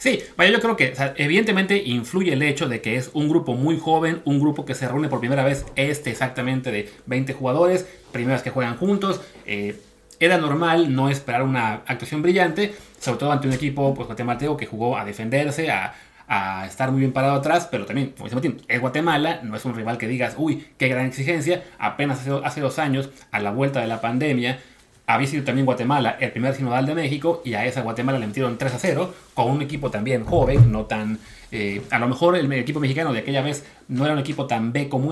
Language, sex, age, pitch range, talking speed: Spanish, male, 30-49, 120-145 Hz, 220 wpm